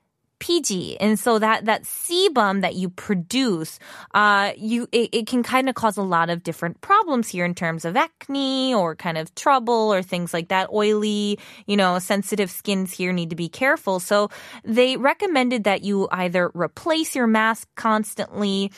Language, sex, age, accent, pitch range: Korean, female, 20-39, American, 180-245 Hz